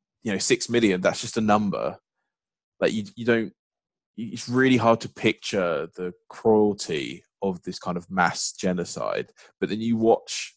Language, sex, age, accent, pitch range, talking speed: English, male, 20-39, British, 95-115 Hz, 170 wpm